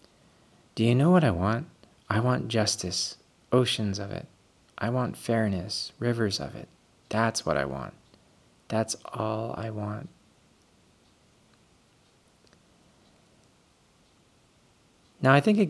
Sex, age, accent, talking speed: male, 30-49, American, 115 wpm